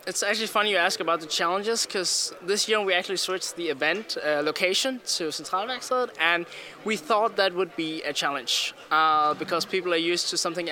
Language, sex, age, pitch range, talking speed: English, male, 20-39, 165-205 Hz, 200 wpm